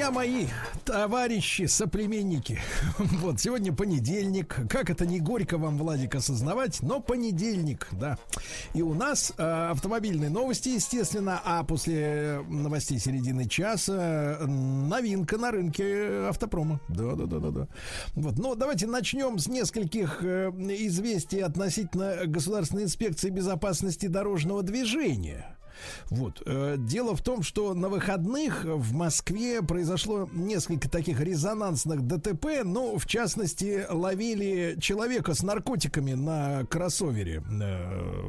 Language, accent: Russian, native